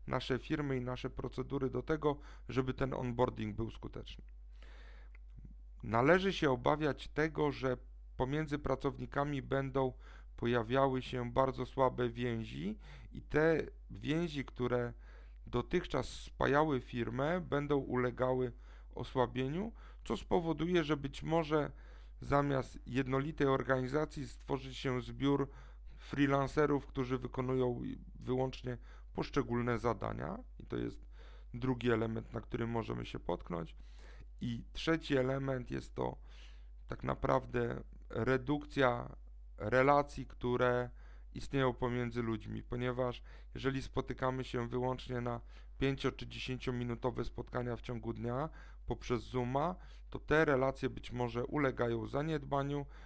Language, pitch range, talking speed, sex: Polish, 115-135 Hz, 110 wpm, male